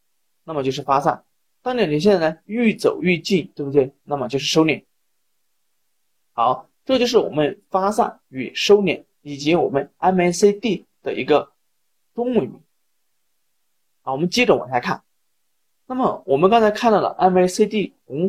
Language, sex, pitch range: Chinese, male, 150-210 Hz